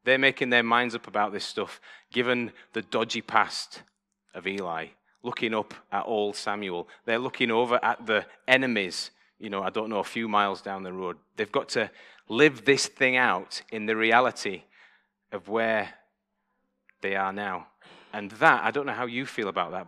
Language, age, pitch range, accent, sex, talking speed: English, 30-49, 105-140 Hz, British, male, 185 wpm